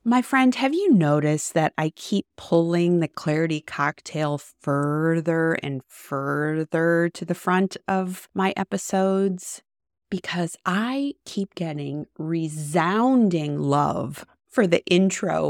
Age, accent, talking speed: 30-49, American, 115 wpm